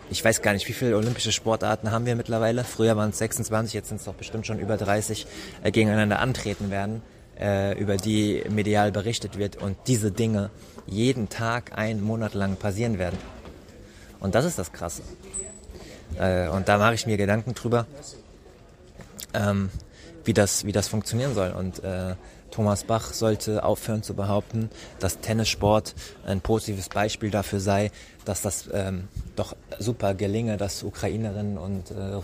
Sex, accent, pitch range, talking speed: male, German, 100-110 Hz, 160 wpm